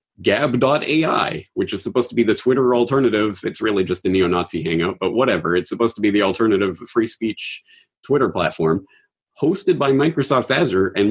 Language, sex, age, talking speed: English, male, 30-49, 175 wpm